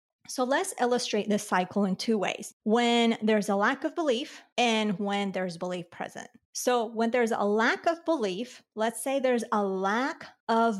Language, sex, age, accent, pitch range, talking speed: English, female, 30-49, American, 200-245 Hz, 180 wpm